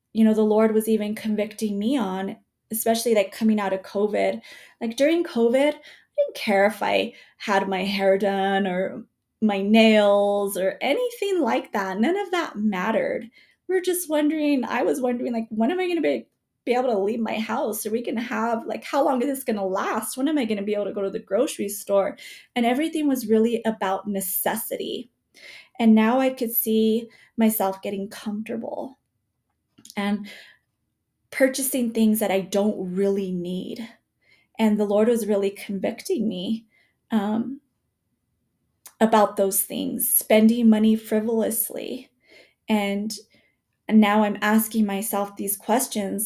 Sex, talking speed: female, 165 wpm